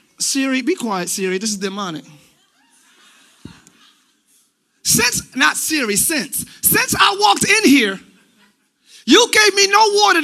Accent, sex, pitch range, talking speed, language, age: American, male, 275-410 Hz, 125 wpm, English, 30-49